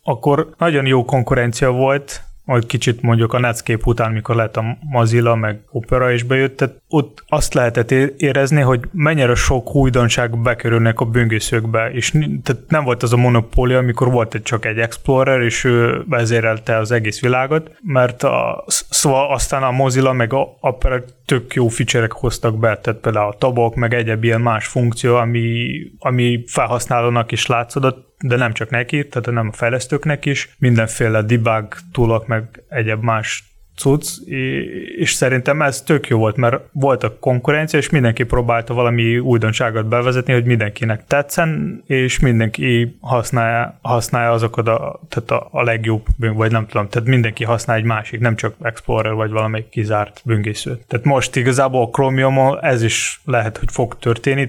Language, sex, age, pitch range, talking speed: Hungarian, male, 20-39, 115-135 Hz, 160 wpm